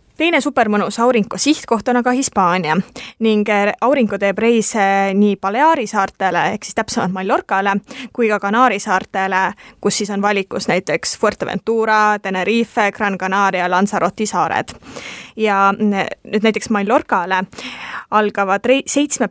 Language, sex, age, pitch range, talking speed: English, female, 20-39, 195-230 Hz, 120 wpm